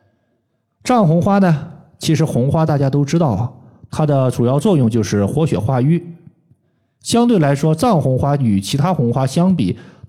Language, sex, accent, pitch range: Chinese, male, native, 115-165 Hz